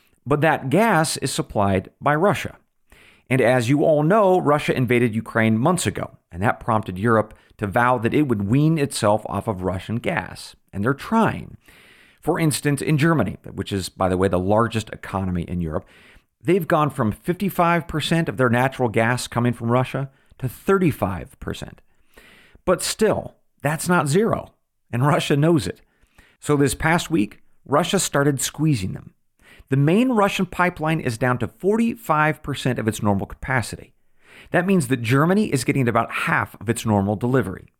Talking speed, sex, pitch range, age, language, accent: 165 wpm, male, 110-155 Hz, 40-59, English, American